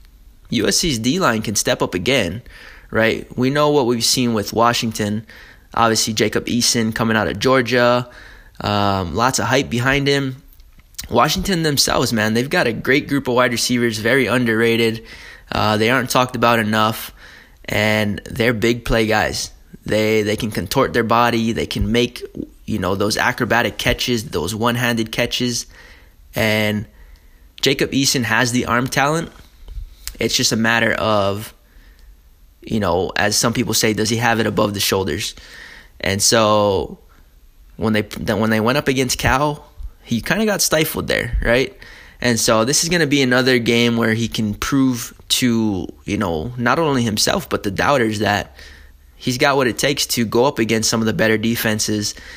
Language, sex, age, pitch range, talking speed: English, male, 20-39, 105-125 Hz, 170 wpm